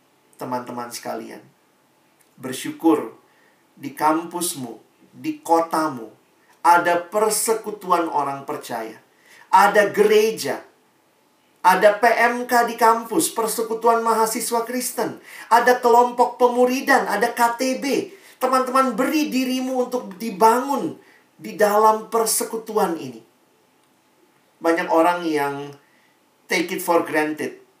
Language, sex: Indonesian, male